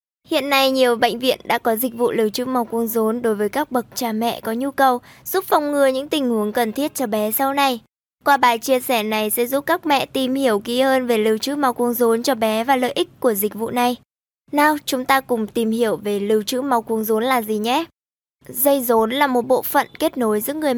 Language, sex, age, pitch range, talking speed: Vietnamese, male, 20-39, 225-275 Hz, 255 wpm